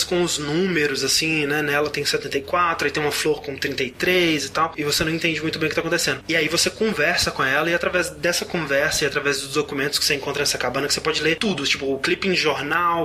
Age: 20-39